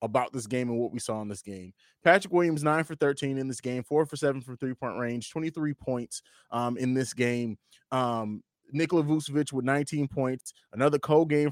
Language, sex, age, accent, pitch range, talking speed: English, male, 20-39, American, 130-165 Hz, 210 wpm